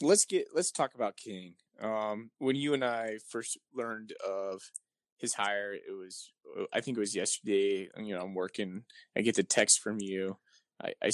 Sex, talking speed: male, 190 wpm